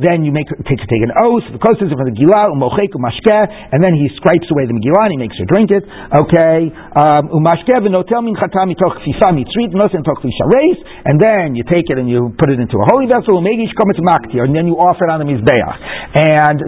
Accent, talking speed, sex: American, 190 wpm, male